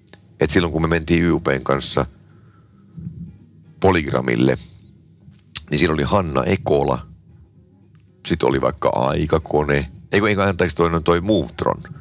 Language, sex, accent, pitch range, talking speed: Finnish, male, native, 70-95 Hz, 110 wpm